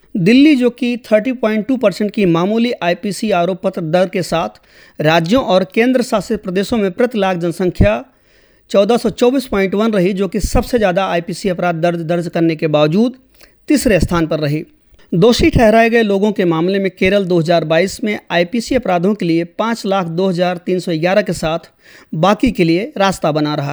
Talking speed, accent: 140 wpm, Indian